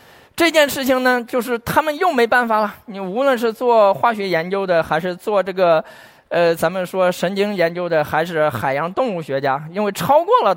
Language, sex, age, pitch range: Chinese, male, 20-39, 155-235 Hz